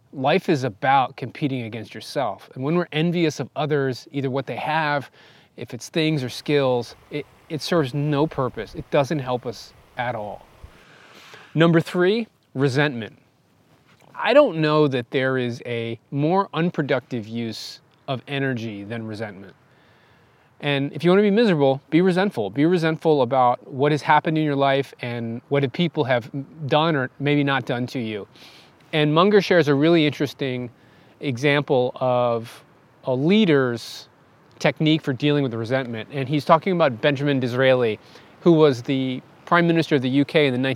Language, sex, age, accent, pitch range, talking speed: English, male, 30-49, American, 130-160 Hz, 160 wpm